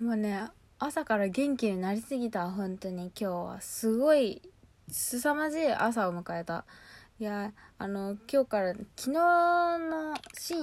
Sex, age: female, 20-39